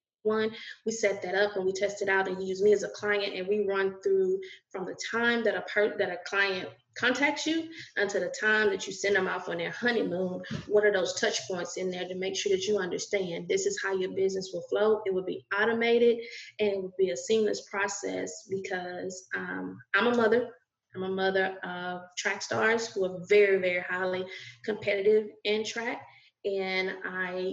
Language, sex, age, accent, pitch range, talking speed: English, female, 20-39, American, 185-215 Hz, 205 wpm